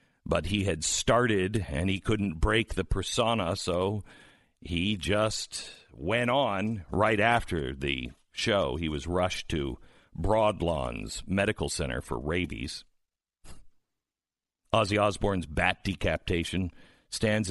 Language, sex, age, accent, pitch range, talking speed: English, male, 50-69, American, 85-115 Hz, 115 wpm